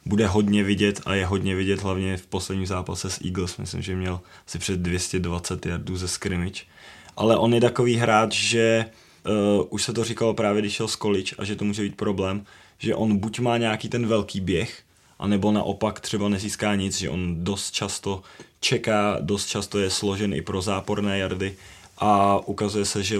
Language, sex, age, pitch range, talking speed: Czech, male, 20-39, 90-100 Hz, 190 wpm